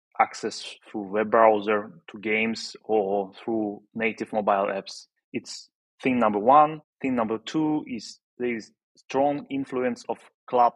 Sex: male